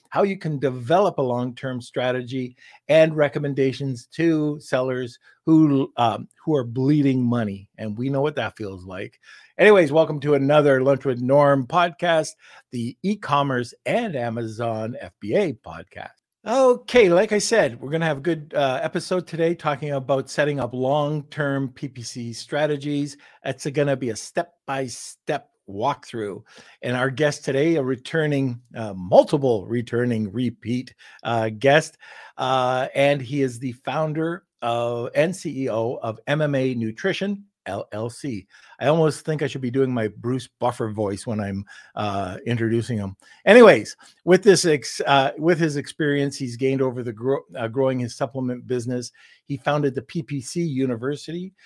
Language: English